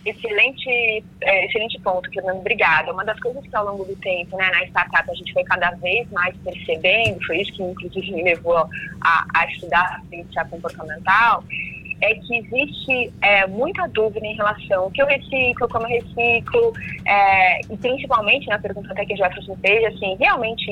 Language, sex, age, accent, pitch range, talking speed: Portuguese, female, 20-39, Brazilian, 180-225 Hz, 185 wpm